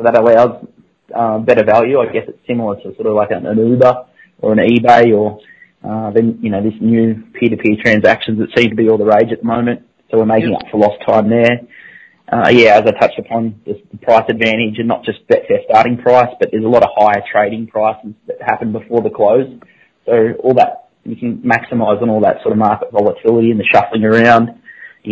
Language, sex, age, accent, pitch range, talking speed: English, male, 20-39, Australian, 110-120 Hz, 225 wpm